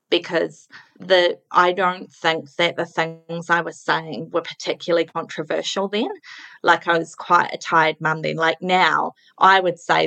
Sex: female